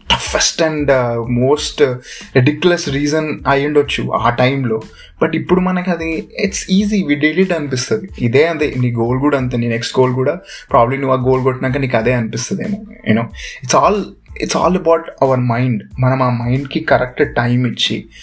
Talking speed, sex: 165 wpm, male